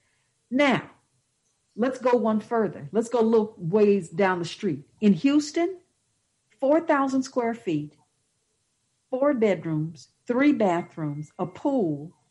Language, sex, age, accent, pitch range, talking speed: English, female, 50-69, American, 150-220 Hz, 115 wpm